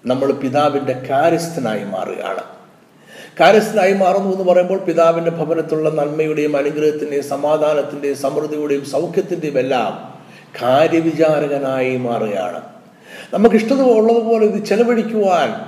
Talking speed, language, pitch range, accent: 85 wpm, Malayalam, 130-190 Hz, native